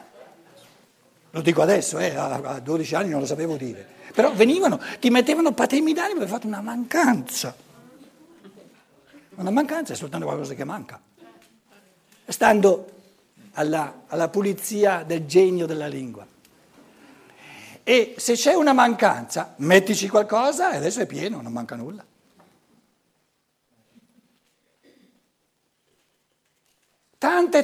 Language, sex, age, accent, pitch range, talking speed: Italian, male, 60-79, native, 180-250 Hz, 110 wpm